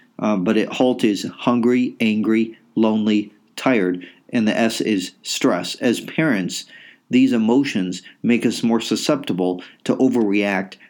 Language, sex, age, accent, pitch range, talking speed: English, male, 40-59, American, 100-115 Hz, 130 wpm